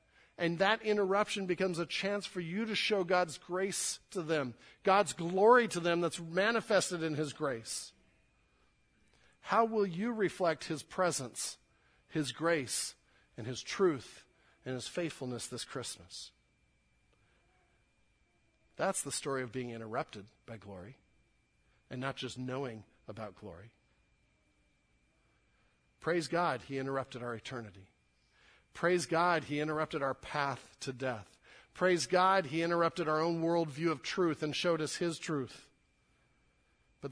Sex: male